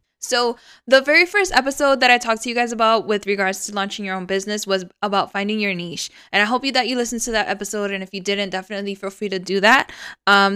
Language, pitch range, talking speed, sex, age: English, 195-230 Hz, 250 wpm, female, 10-29